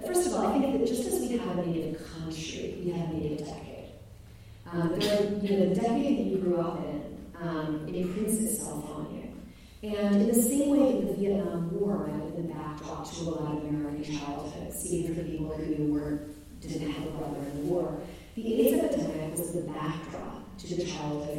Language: English